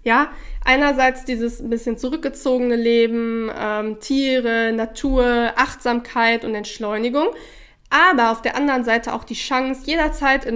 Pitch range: 230-265 Hz